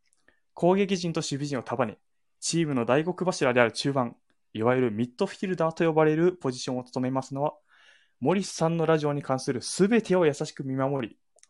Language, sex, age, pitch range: Japanese, male, 20-39, 130-180 Hz